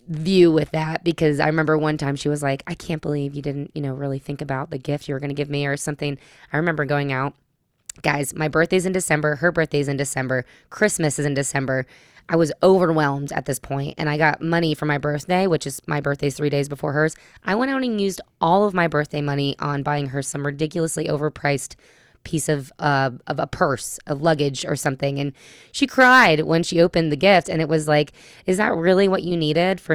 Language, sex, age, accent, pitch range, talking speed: English, female, 20-39, American, 140-170 Hz, 230 wpm